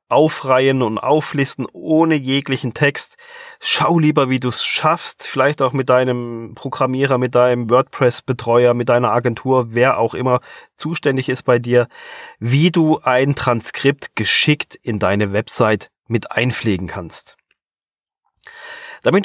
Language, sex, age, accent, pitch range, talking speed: German, male, 30-49, German, 120-155 Hz, 130 wpm